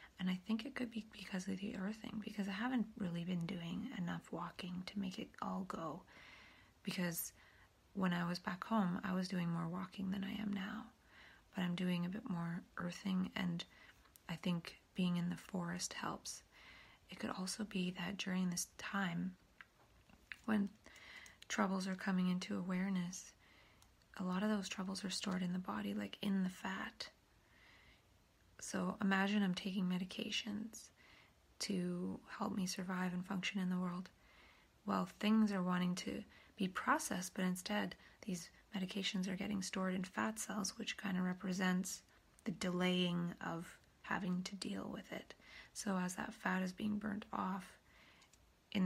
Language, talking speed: English, 165 wpm